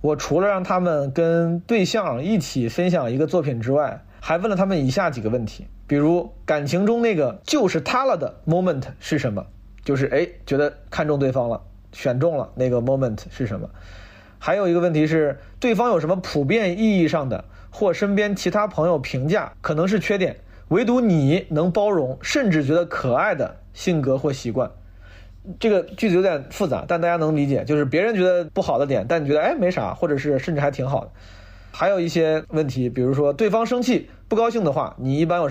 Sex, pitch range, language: male, 130-180 Hz, Chinese